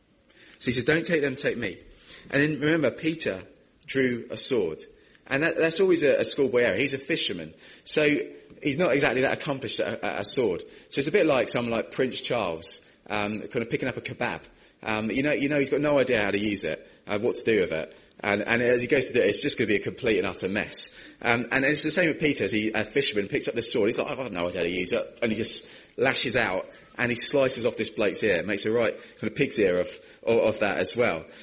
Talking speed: 260 wpm